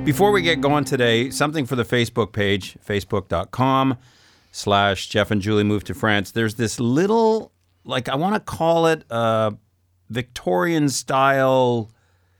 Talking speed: 140 wpm